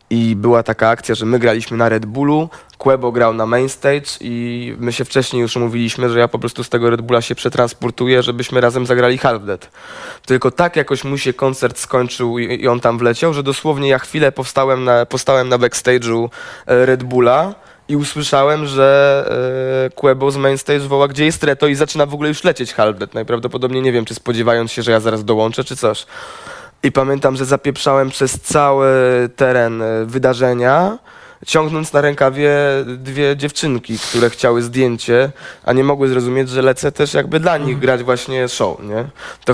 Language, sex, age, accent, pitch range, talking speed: Polish, male, 20-39, native, 115-135 Hz, 175 wpm